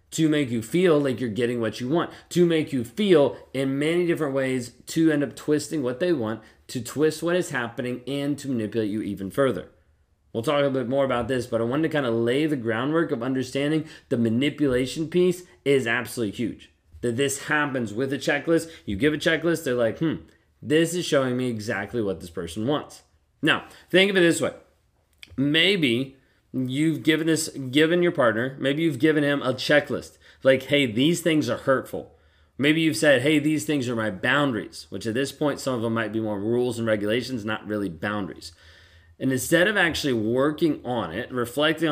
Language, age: English, 20-39